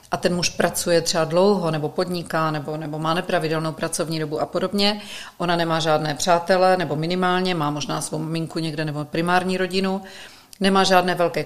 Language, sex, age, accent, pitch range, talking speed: Czech, female, 40-59, native, 165-195 Hz, 175 wpm